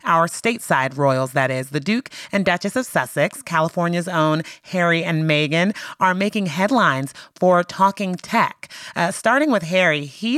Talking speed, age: 155 wpm, 30-49